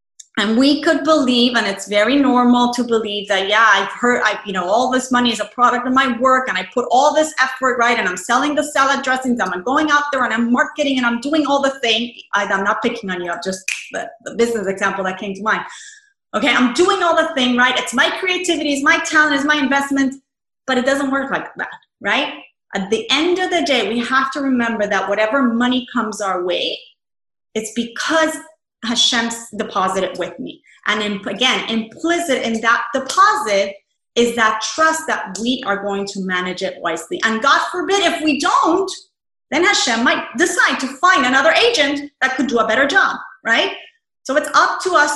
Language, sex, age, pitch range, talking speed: English, female, 30-49, 215-290 Hz, 205 wpm